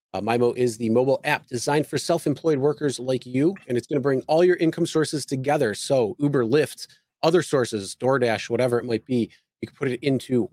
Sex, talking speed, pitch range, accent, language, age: male, 210 wpm, 120-150 Hz, American, English, 30-49